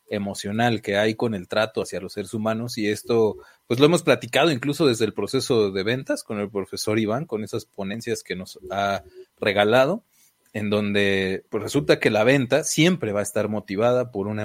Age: 30-49